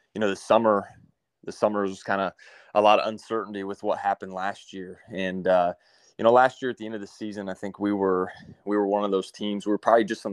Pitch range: 95-105 Hz